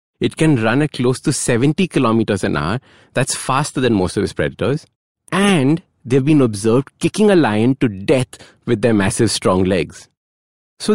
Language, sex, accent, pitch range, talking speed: English, male, Indian, 110-160 Hz, 175 wpm